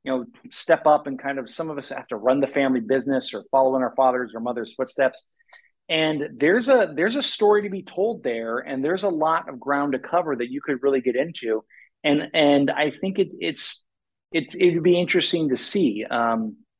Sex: male